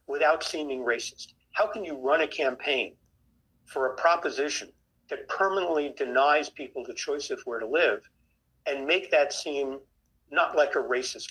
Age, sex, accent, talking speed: 50-69, male, American, 160 wpm